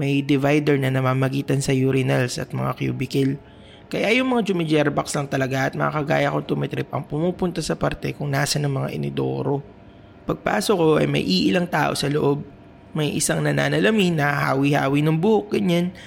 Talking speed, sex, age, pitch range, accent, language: 170 wpm, male, 20-39, 130-165 Hz, Filipino, English